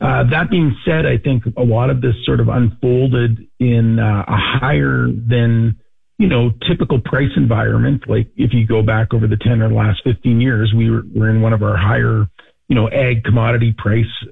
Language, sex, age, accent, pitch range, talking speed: English, male, 40-59, American, 110-130 Hz, 205 wpm